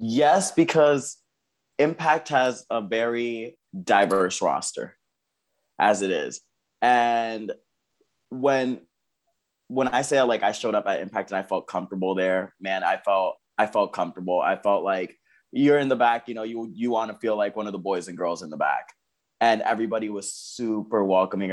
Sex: male